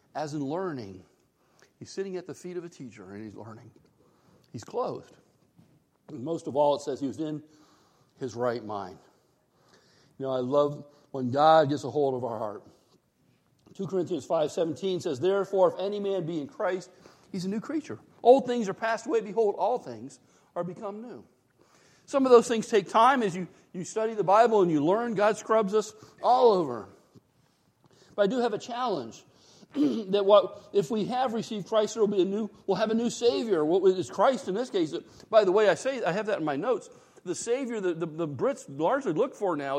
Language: English